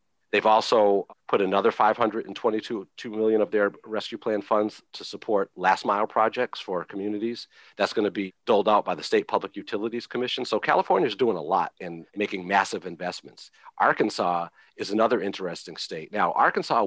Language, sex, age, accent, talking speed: English, male, 40-59, American, 170 wpm